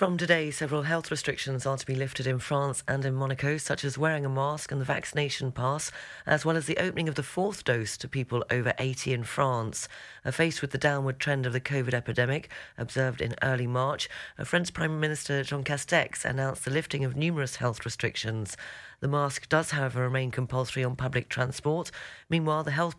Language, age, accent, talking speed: English, 30-49, British, 200 wpm